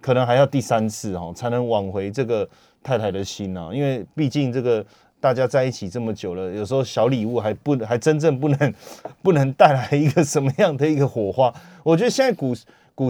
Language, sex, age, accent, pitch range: Chinese, male, 30-49, native, 115-155 Hz